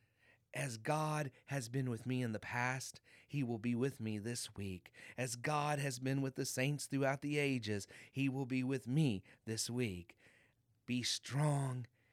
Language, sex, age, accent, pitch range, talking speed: English, male, 30-49, American, 115-140 Hz, 175 wpm